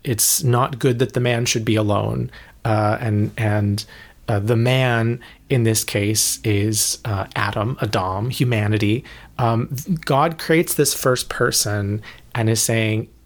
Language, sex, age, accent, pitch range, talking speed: English, male, 30-49, American, 110-150 Hz, 145 wpm